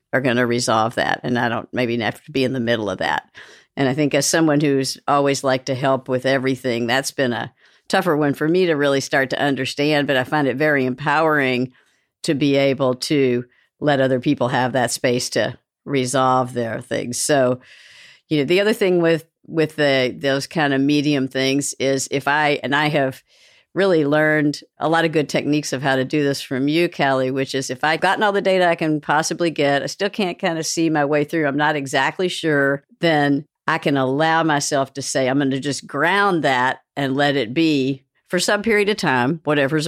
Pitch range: 130-155 Hz